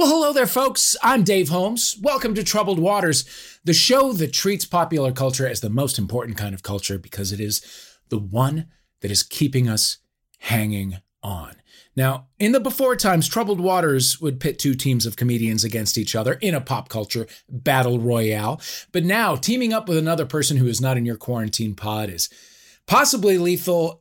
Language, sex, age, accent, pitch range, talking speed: English, male, 40-59, American, 110-160 Hz, 185 wpm